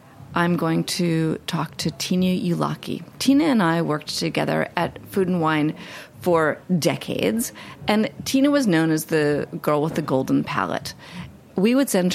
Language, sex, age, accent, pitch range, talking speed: English, female, 40-59, American, 160-200 Hz, 160 wpm